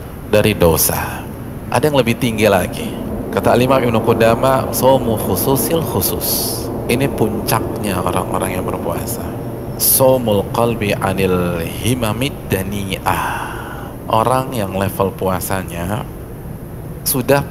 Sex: male